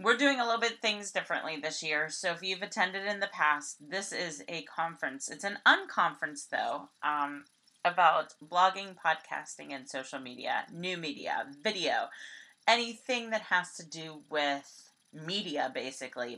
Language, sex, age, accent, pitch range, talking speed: English, female, 30-49, American, 155-210 Hz, 155 wpm